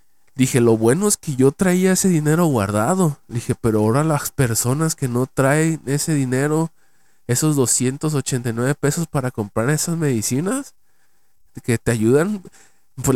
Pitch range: 110-140 Hz